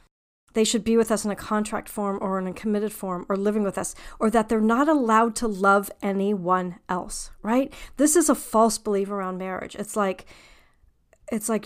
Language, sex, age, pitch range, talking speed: English, female, 40-59, 205-280 Hz, 200 wpm